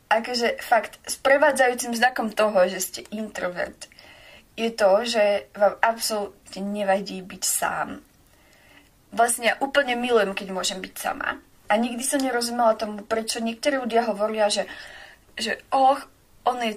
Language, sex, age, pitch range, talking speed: Slovak, female, 20-39, 200-235 Hz, 145 wpm